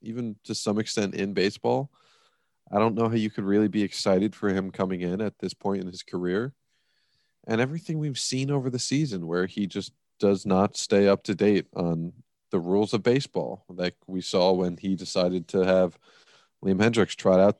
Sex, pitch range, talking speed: male, 90-110 Hz, 200 wpm